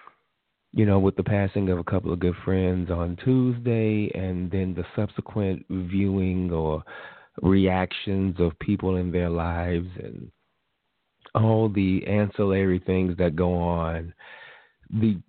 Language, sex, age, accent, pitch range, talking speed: English, male, 30-49, American, 90-110 Hz, 135 wpm